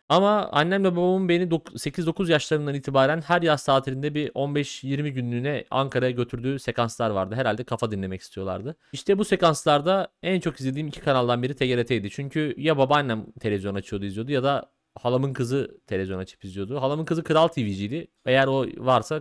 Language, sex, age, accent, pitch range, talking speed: Turkish, male, 30-49, native, 120-155 Hz, 160 wpm